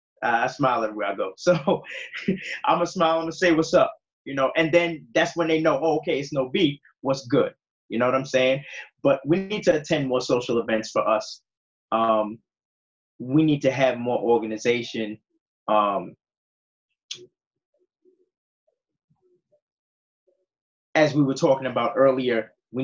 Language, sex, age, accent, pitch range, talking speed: English, male, 20-39, American, 110-160 Hz, 155 wpm